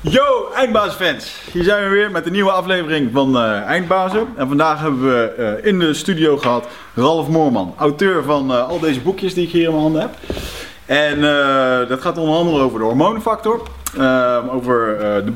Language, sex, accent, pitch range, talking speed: Dutch, male, Dutch, 125-165 Hz, 180 wpm